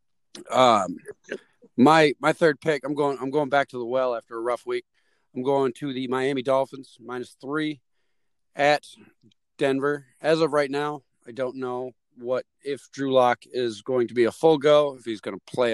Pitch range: 125-155 Hz